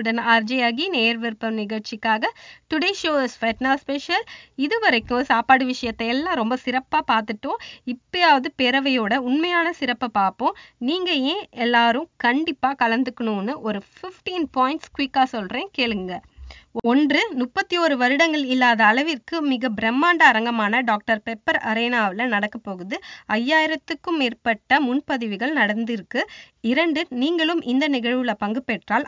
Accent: native